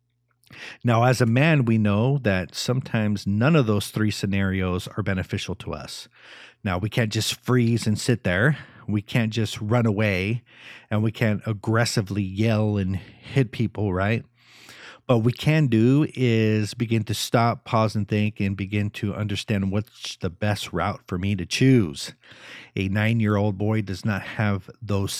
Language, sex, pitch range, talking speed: English, male, 105-125 Hz, 165 wpm